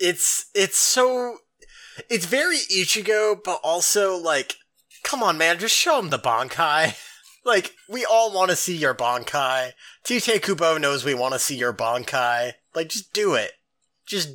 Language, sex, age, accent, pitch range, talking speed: English, male, 30-49, American, 130-195 Hz, 165 wpm